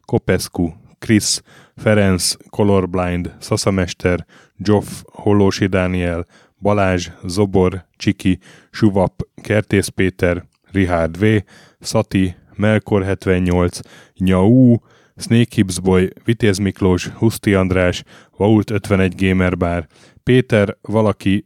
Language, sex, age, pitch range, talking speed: Hungarian, male, 10-29, 90-105 Hz, 80 wpm